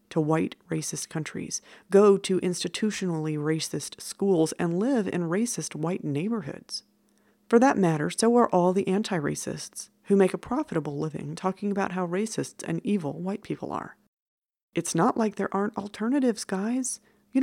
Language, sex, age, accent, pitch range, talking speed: English, female, 40-59, American, 160-205 Hz, 155 wpm